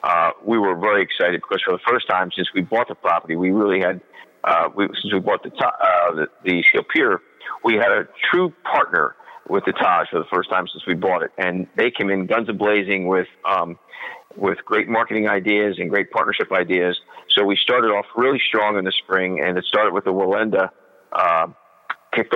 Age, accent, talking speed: 50-69, American, 210 wpm